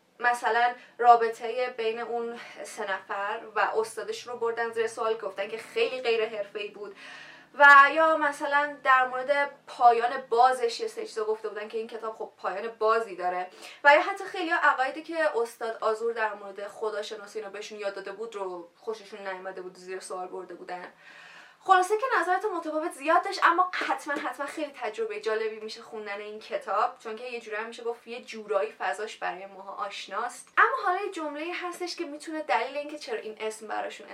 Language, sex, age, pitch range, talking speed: Persian, female, 20-39, 210-295 Hz, 180 wpm